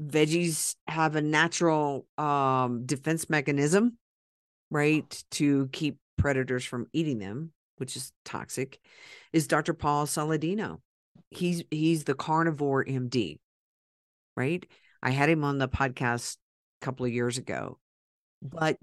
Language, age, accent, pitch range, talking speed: English, 50-69, American, 135-165 Hz, 125 wpm